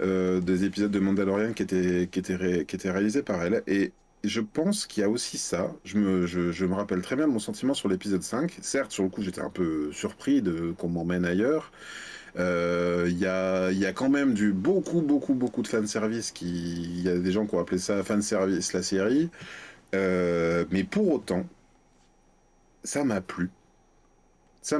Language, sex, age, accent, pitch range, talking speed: French, male, 30-49, French, 90-110 Hz, 195 wpm